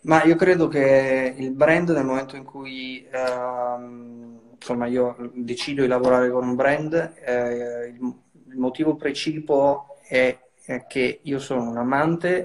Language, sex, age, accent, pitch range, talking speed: Italian, male, 20-39, native, 120-135 Hz, 145 wpm